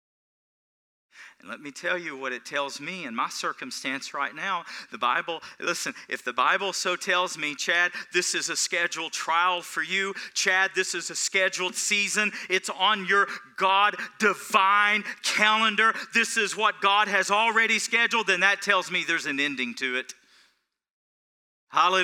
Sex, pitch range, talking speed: male, 190-265 Hz, 160 wpm